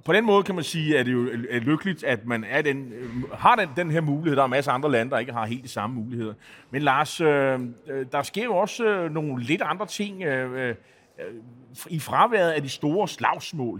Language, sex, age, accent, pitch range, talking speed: Danish, male, 30-49, native, 120-170 Hz, 220 wpm